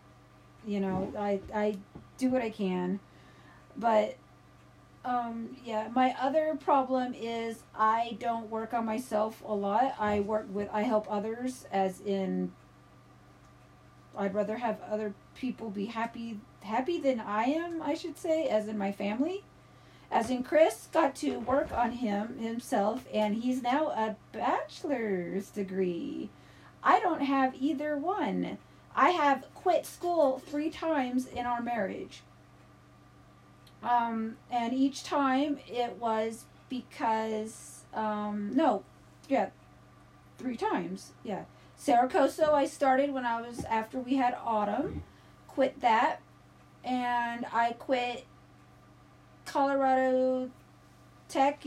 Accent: American